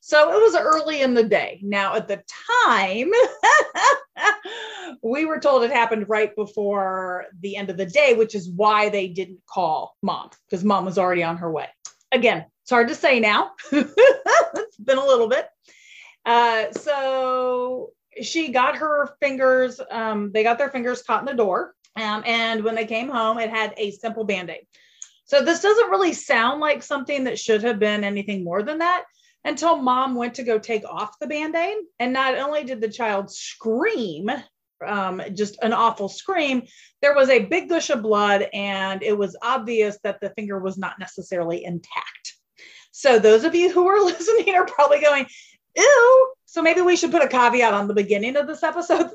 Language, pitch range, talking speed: English, 210-295 Hz, 185 wpm